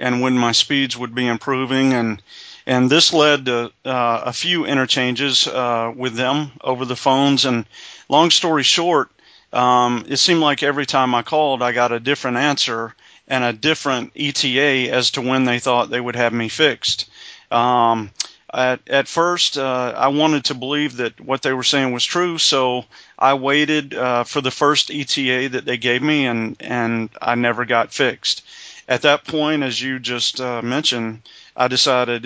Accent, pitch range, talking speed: American, 120-140 Hz, 180 wpm